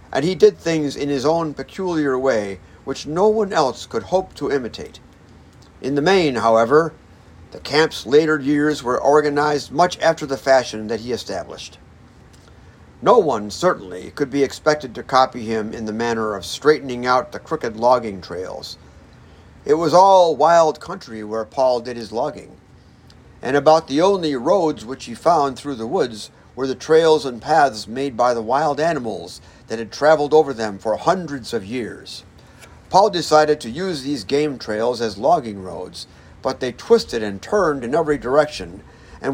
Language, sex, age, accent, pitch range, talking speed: English, male, 50-69, American, 125-160 Hz, 170 wpm